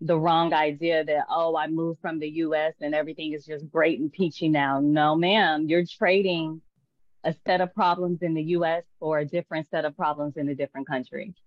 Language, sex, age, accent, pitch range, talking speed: English, female, 20-39, American, 155-200 Hz, 205 wpm